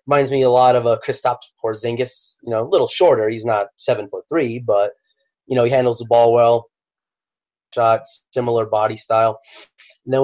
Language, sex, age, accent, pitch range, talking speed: English, male, 30-49, American, 110-120 Hz, 165 wpm